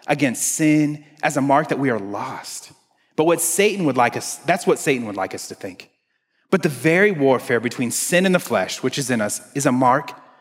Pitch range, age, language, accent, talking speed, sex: 120-175 Hz, 30-49, English, American, 225 wpm, male